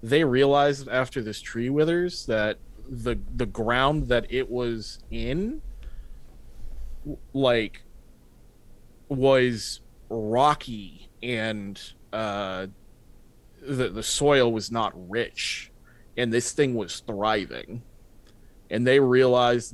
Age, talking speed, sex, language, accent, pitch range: 20-39, 100 wpm, male, English, American, 110-130 Hz